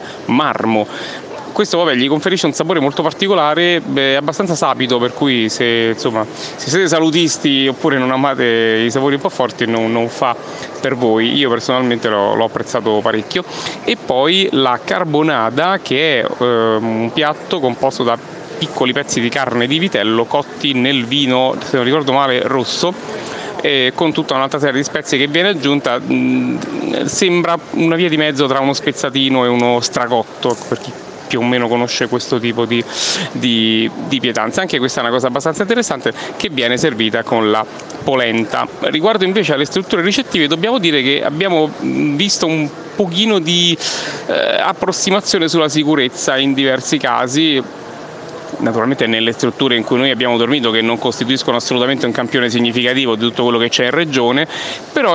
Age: 30-49